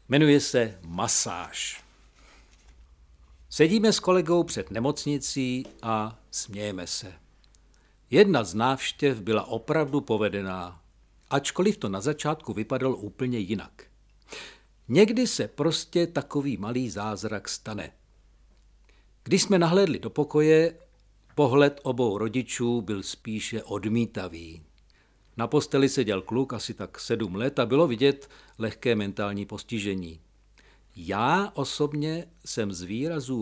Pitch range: 100-145 Hz